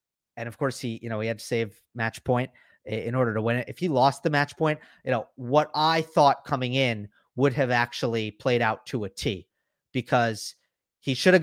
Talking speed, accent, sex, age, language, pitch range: 220 wpm, American, male, 30-49, English, 115-145 Hz